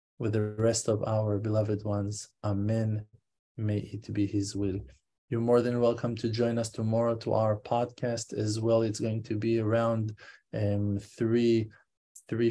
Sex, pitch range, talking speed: male, 105-115 Hz, 165 wpm